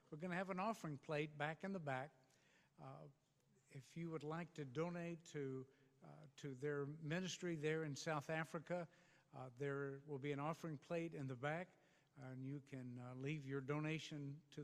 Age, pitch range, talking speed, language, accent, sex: 60-79, 135-165 Hz, 185 wpm, English, American, male